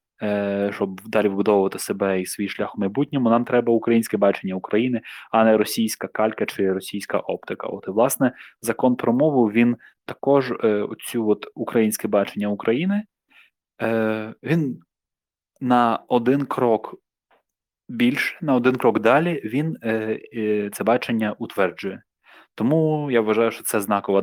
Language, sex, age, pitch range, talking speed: Ukrainian, male, 20-39, 105-115 Hz, 130 wpm